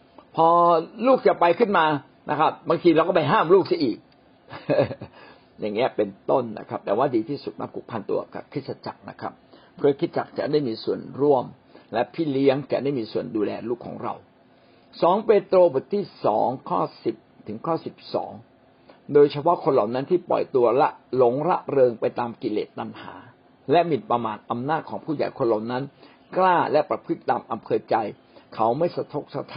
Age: 60-79